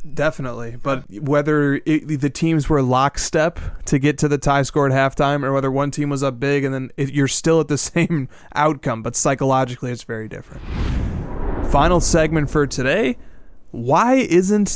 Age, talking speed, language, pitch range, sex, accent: 20-39, 175 wpm, English, 130-170 Hz, male, American